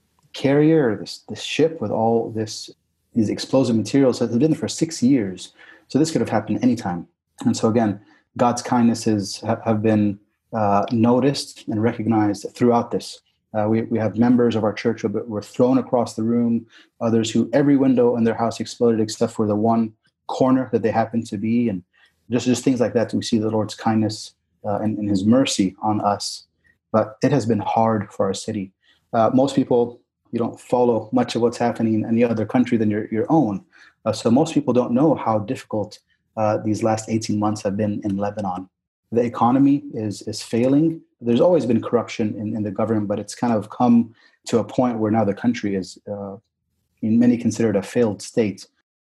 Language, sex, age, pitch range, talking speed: English, male, 30-49, 105-120 Hz, 200 wpm